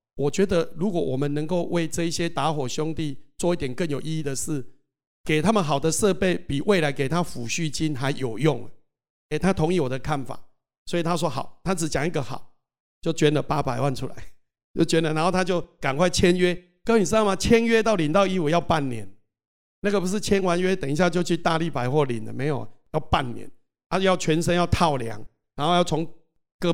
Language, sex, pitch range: Chinese, male, 145-190 Hz